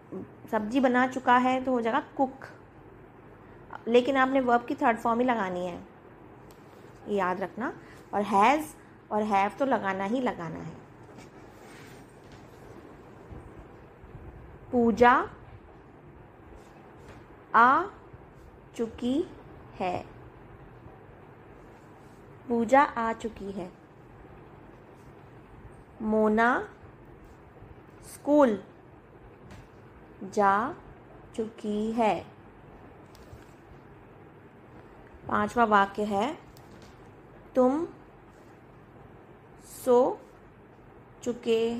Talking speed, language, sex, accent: 65 wpm, Hindi, female, native